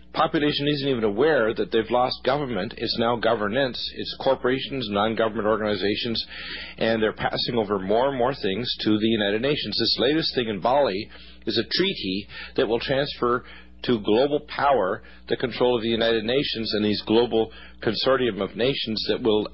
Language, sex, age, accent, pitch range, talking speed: English, male, 50-69, American, 100-125 Hz, 170 wpm